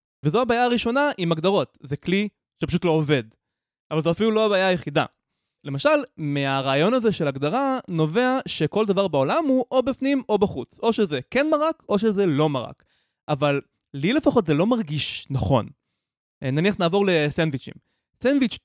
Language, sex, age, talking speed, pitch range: Hebrew, male, 20-39, 160 wpm, 150-220 Hz